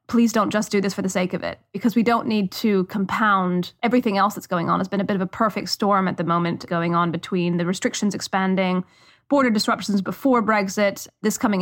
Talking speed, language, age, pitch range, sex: 225 wpm, English, 30-49, 185-220 Hz, female